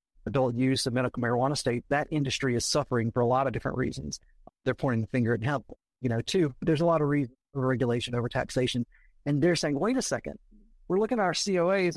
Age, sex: 40-59, male